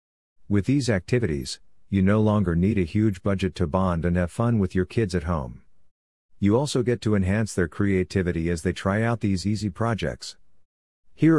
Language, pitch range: English, 85-105 Hz